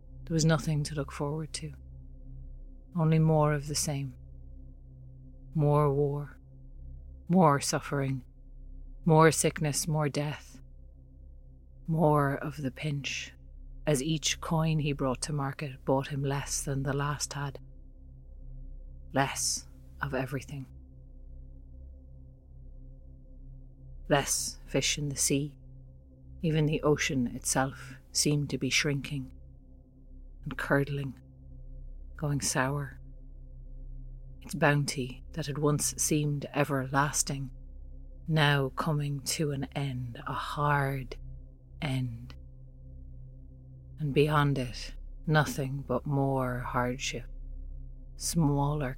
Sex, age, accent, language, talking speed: female, 30-49, Irish, English, 100 wpm